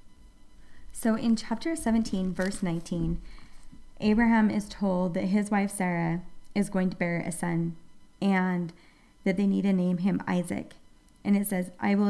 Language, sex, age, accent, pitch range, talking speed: English, female, 30-49, American, 185-210 Hz, 160 wpm